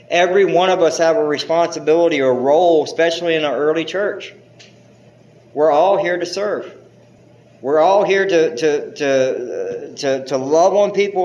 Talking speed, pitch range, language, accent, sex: 160 wpm, 130-165 Hz, English, American, male